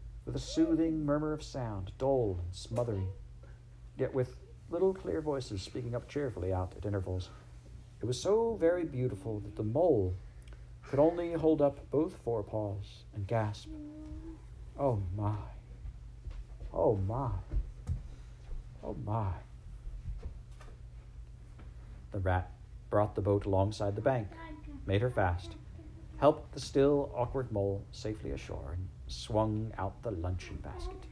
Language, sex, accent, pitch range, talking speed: English, male, American, 95-125 Hz, 125 wpm